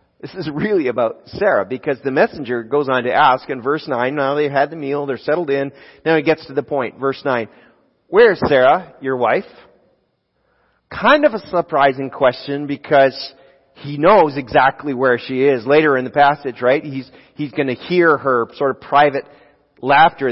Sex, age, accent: male, 40-59, American